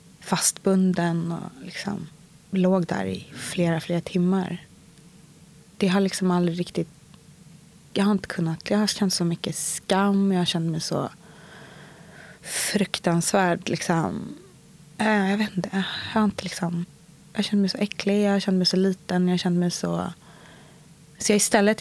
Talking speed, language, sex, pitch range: 150 wpm, Swedish, female, 170-195 Hz